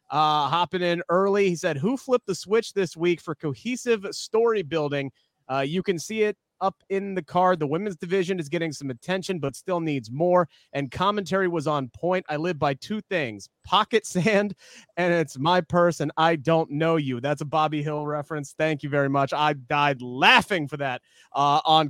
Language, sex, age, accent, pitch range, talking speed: English, male, 30-49, American, 140-180 Hz, 195 wpm